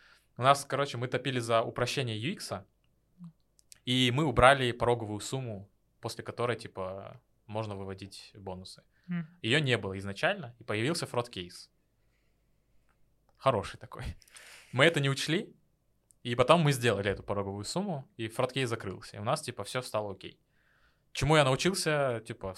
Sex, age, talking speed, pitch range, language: male, 20-39, 145 wpm, 105-130 Hz, Russian